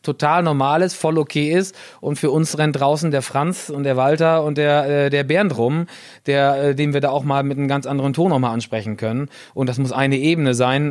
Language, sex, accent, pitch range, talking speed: German, male, German, 135-155 Hz, 230 wpm